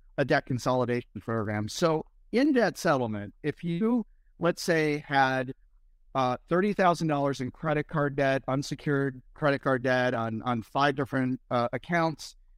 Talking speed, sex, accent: 140 wpm, male, American